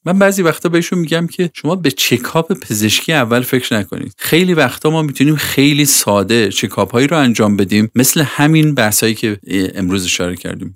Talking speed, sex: 180 wpm, male